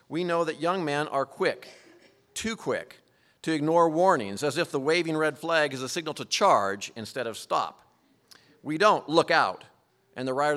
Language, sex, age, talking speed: English, male, 50-69, 185 wpm